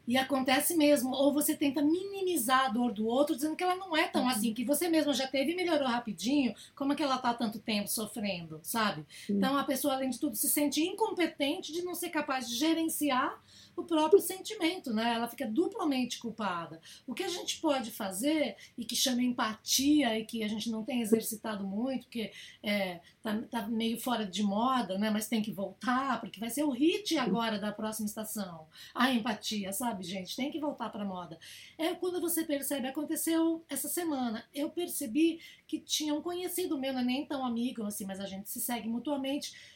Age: 20-39